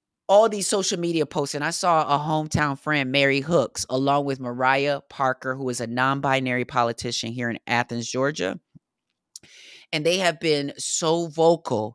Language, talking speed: English, 160 wpm